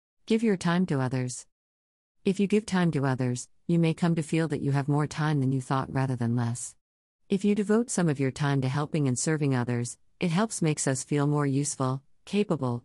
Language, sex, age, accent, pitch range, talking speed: English, female, 50-69, American, 130-160 Hz, 220 wpm